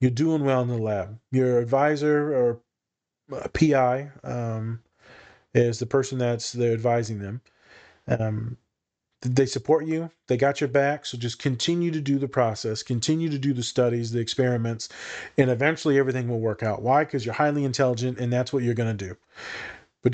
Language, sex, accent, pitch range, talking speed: English, male, American, 110-135 Hz, 175 wpm